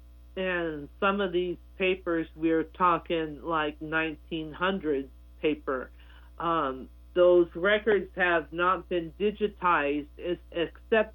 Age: 50-69